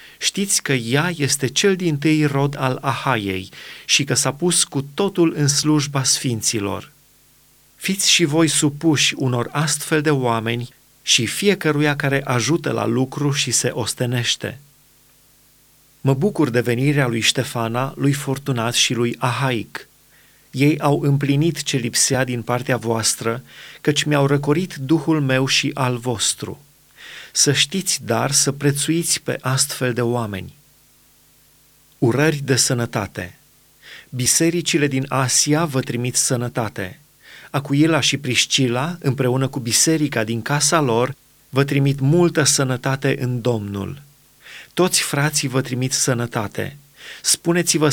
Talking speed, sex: 130 wpm, male